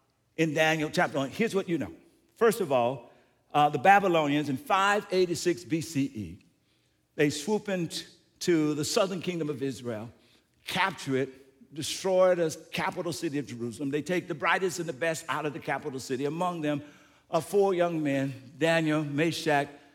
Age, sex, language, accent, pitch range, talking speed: 60-79, male, English, American, 150-205 Hz, 160 wpm